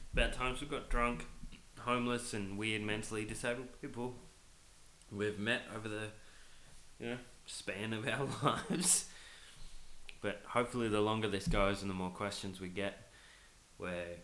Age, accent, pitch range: 20-39, Australian, 100-120 Hz